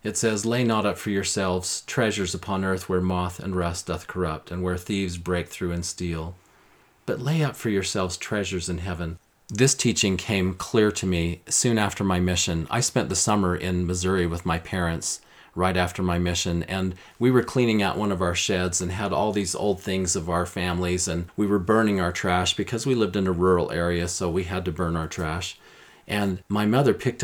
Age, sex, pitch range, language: 40-59, male, 90-115 Hz, English